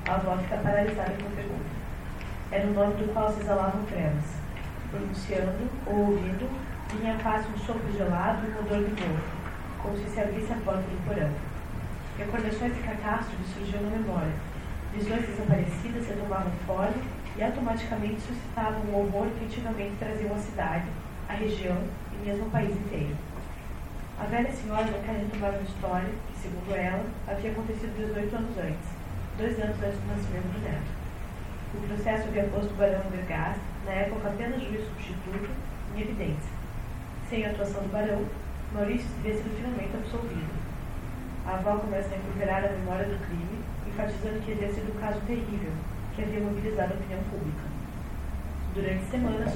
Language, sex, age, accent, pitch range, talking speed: Portuguese, female, 10-29, Brazilian, 150-215 Hz, 165 wpm